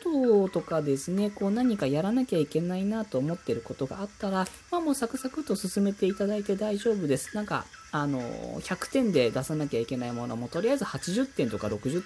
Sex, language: female, Japanese